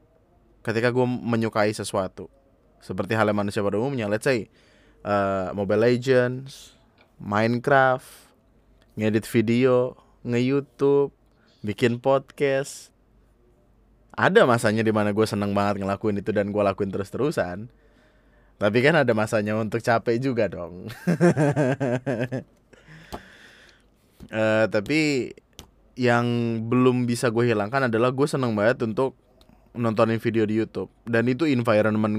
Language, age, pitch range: Indonesian, 20-39, 105-125 Hz